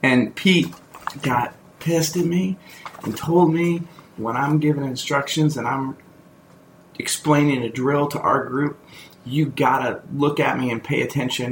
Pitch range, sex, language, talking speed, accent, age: 100-135 Hz, male, English, 155 wpm, American, 30-49